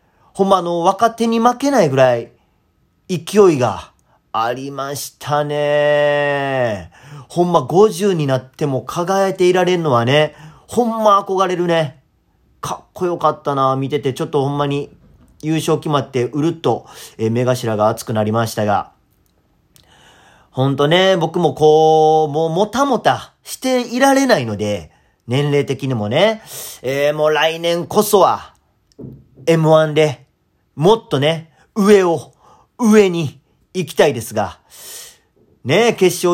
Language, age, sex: Japanese, 40-59, male